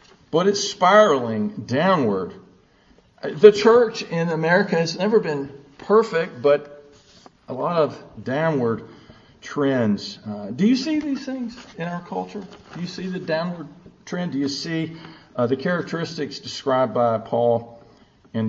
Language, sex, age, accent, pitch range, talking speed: English, male, 50-69, American, 115-195 Hz, 140 wpm